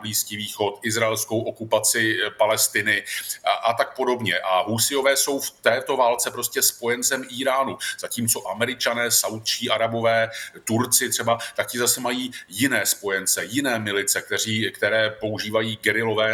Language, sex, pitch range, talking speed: Slovak, male, 110-125 Hz, 130 wpm